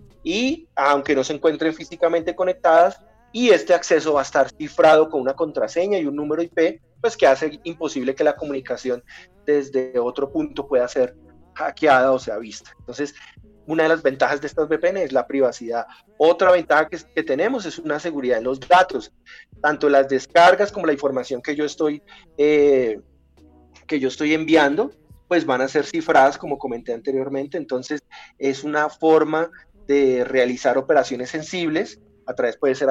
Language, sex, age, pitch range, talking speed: English, male, 30-49, 135-165 Hz, 170 wpm